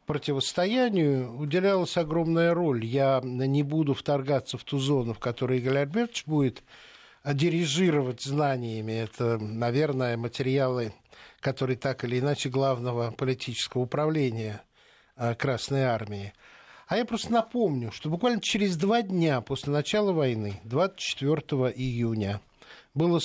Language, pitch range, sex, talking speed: Russian, 125-175 Hz, male, 115 wpm